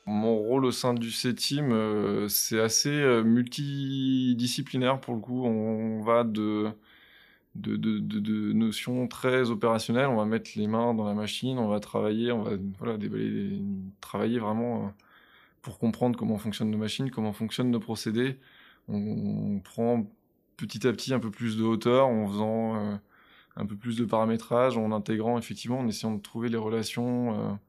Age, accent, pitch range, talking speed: 20-39, French, 105-120 Hz, 165 wpm